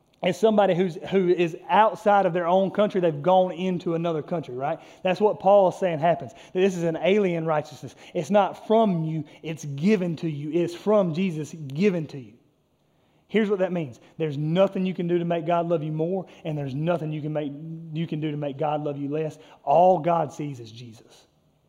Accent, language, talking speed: American, English, 210 wpm